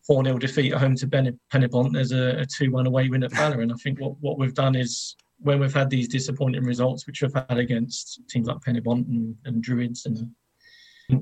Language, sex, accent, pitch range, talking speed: English, male, British, 125-140 Hz, 215 wpm